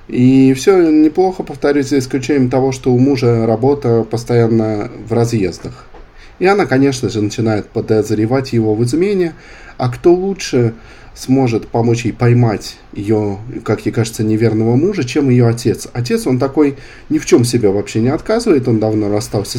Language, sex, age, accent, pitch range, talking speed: Russian, male, 20-39, native, 110-145 Hz, 160 wpm